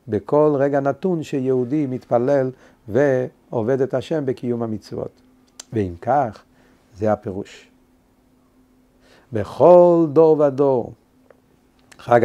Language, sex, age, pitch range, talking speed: Hebrew, male, 60-79, 125-160 Hz, 90 wpm